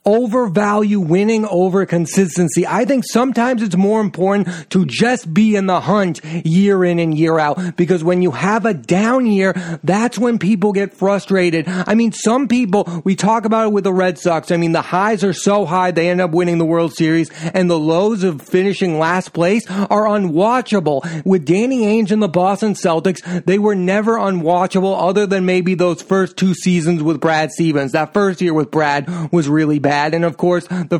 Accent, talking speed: American, 195 wpm